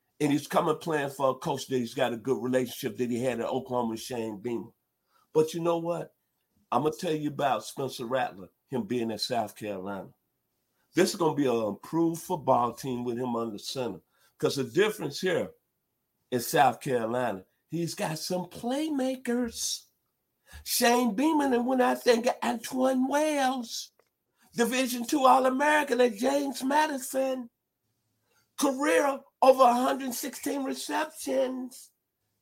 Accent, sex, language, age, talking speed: American, male, English, 50-69, 150 wpm